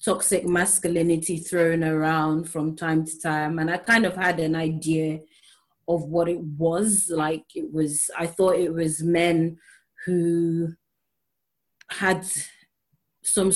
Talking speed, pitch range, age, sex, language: 135 wpm, 165-195 Hz, 30-49, female, English